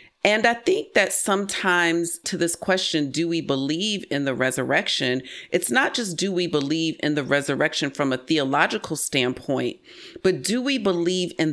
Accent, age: American, 40-59